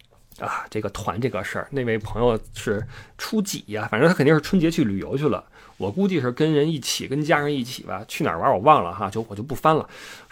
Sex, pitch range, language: male, 120-180 Hz, Chinese